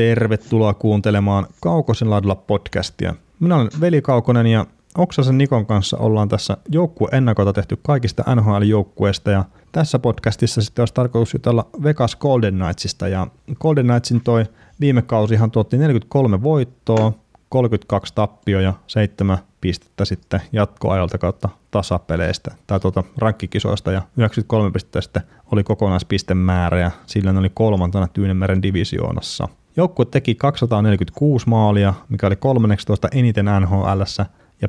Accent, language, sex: native, Finnish, male